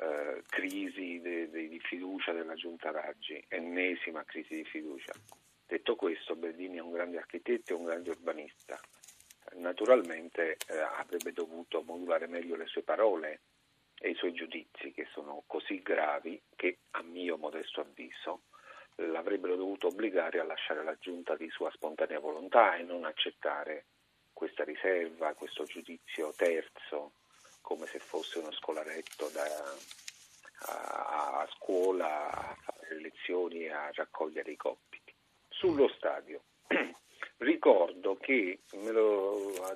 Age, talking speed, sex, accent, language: 50-69, 130 wpm, male, native, Italian